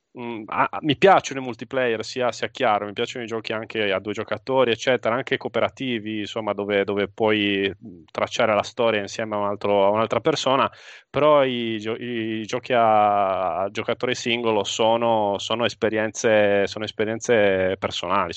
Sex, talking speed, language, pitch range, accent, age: male, 160 wpm, Italian, 105-125 Hz, native, 20-39